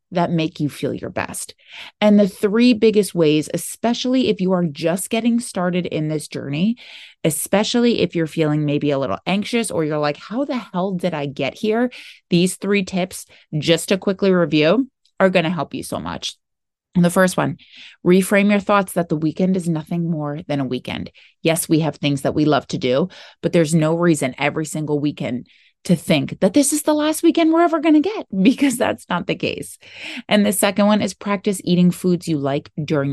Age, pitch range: 30-49, 155-210 Hz